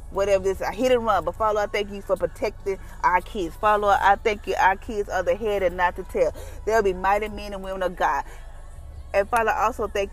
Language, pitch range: English, 185-225 Hz